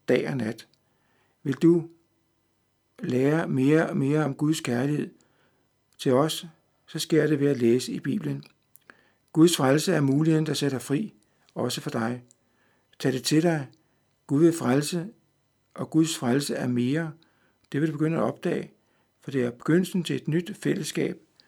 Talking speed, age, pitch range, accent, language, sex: 160 wpm, 60-79, 135-160 Hz, native, Danish, male